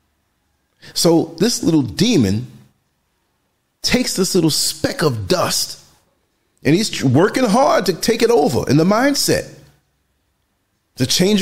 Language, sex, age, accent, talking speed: English, male, 40-59, American, 120 wpm